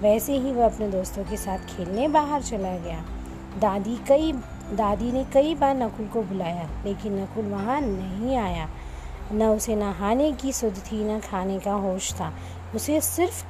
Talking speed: 170 wpm